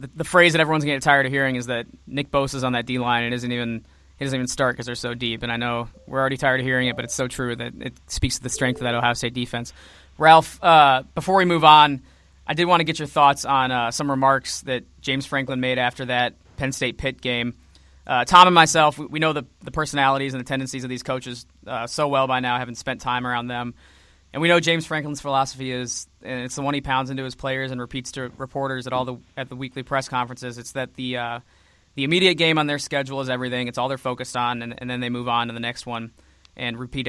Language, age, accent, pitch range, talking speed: English, 20-39, American, 120-140 Hz, 250 wpm